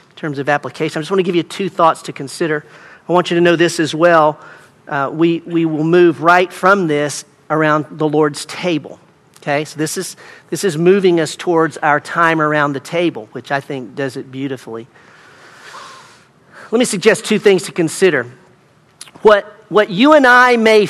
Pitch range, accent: 155-200 Hz, American